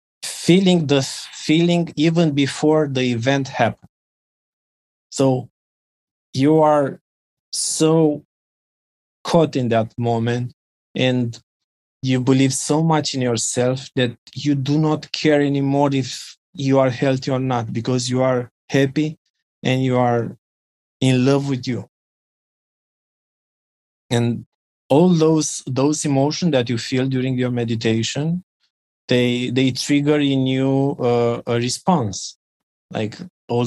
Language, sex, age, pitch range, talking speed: English, male, 20-39, 115-140 Hz, 120 wpm